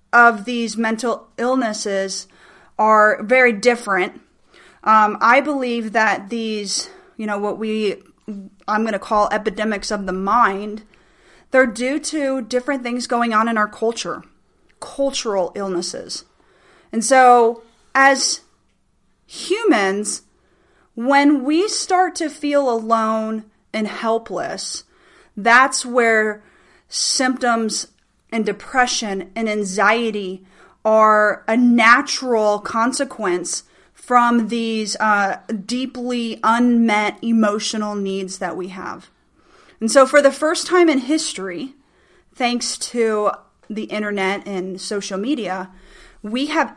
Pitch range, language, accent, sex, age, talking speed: 210-260 Hz, English, American, female, 30-49, 110 wpm